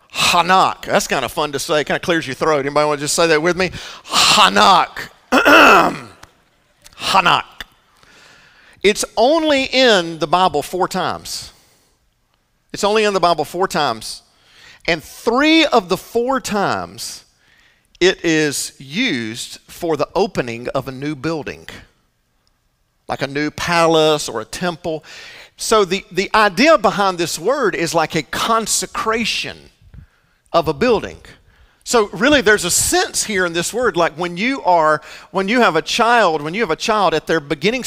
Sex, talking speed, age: male, 160 wpm, 50-69